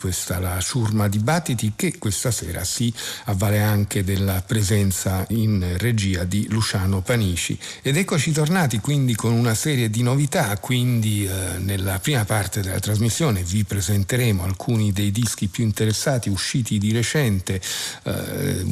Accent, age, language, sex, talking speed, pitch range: native, 50-69, Italian, male, 145 wpm, 95-115 Hz